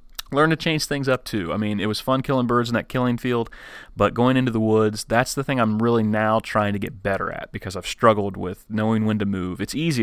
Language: English